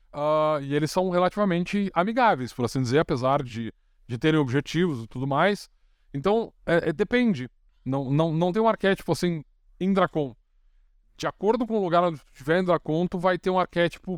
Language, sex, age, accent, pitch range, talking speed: Portuguese, male, 20-39, Brazilian, 135-175 Hz, 185 wpm